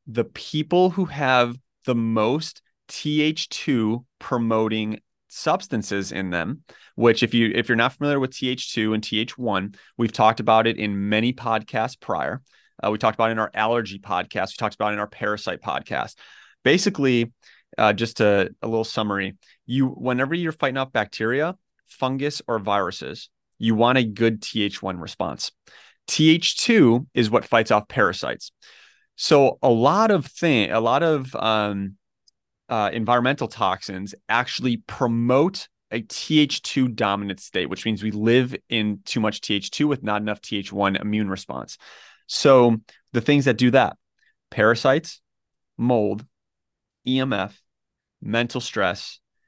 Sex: male